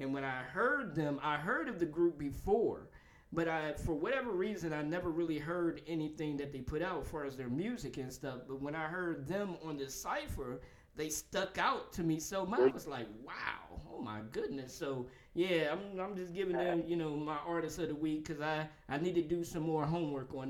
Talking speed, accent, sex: 230 wpm, American, male